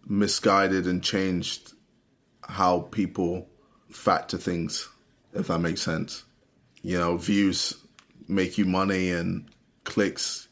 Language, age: English, 20-39